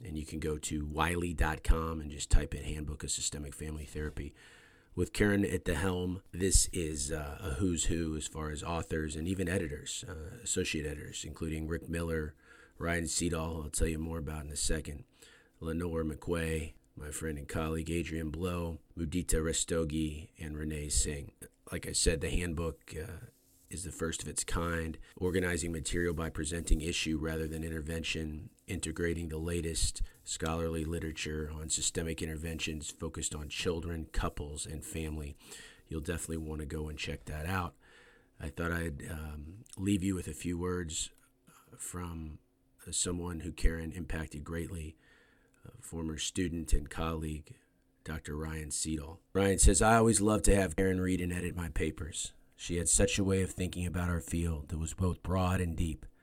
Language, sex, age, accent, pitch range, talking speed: English, male, 40-59, American, 75-90 Hz, 170 wpm